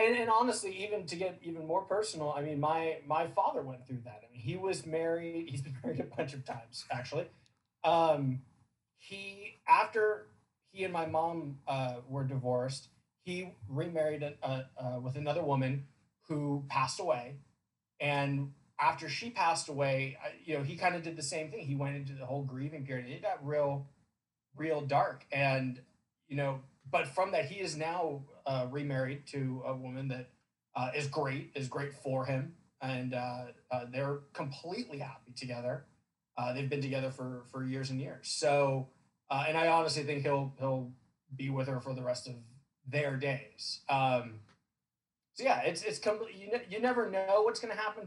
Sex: male